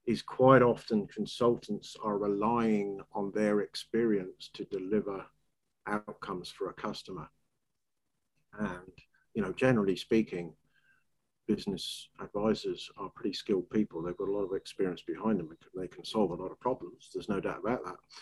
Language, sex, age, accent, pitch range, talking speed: English, male, 50-69, British, 100-140 Hz, 155 wpm